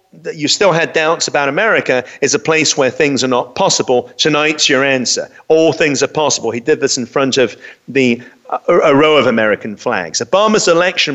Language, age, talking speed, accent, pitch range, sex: English, 40-59, 200 wpm, British, 130-160 Hz, male